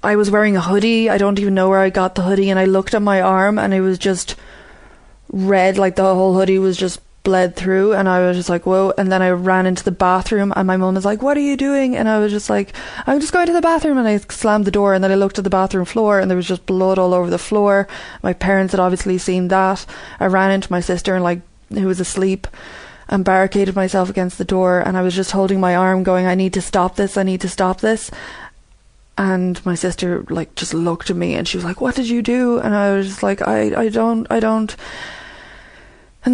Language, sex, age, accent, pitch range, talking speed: English, female, 20-39, Irish, 185-205 Hz, 255 wpm